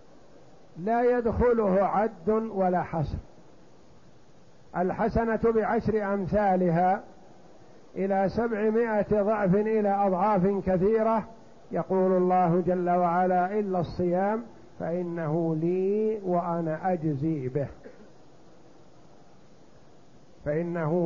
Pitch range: 175-215 Hz